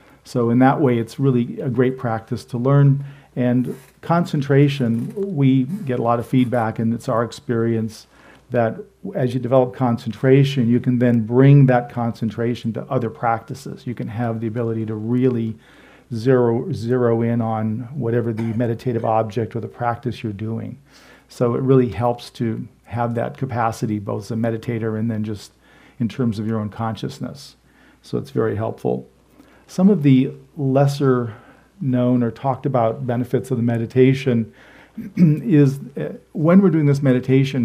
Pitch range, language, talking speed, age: 115-135 Hz, English, 160 wpm, 40-59